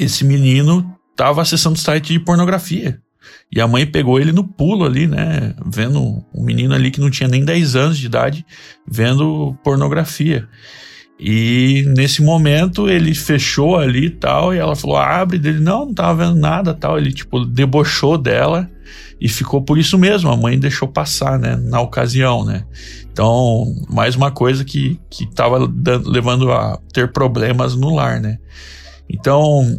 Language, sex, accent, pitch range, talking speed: Portuguese, male, Brazilian, 125-155 Hz, 165 wpm